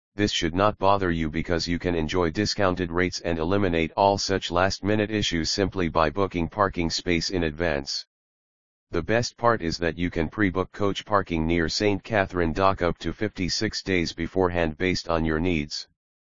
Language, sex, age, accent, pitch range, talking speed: English, male, 40-59, American, 80-100 Hz, 175 wpm